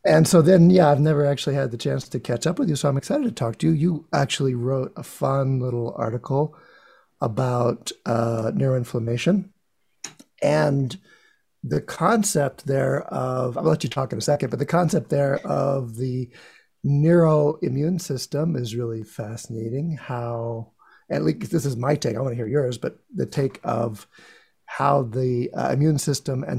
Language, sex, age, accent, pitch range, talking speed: English, male, 50-69, American, 115-150 Hz, 175 wpm